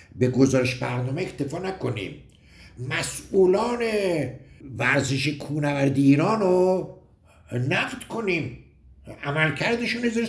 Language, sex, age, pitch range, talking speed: Persian, male, 60-79, 135-195 Hz, 85 wpm